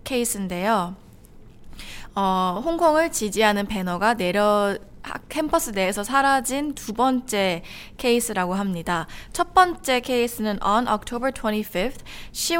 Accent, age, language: Korean, 20-39, English